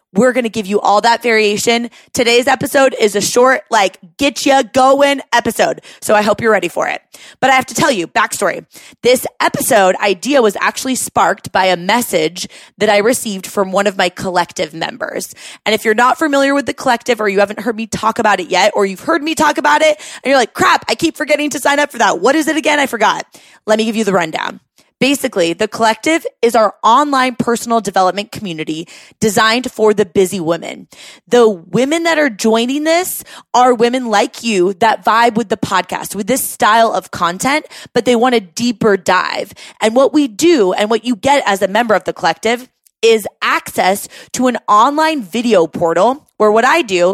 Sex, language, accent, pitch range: female, English, American, 200-260 Hz